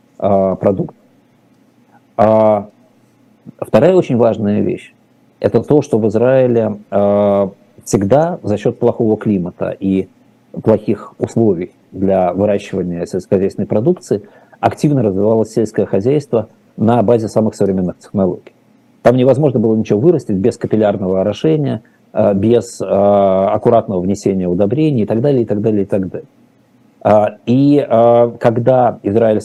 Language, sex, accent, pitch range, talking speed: Russian, male, native, 100-120 Hz, 115 wpm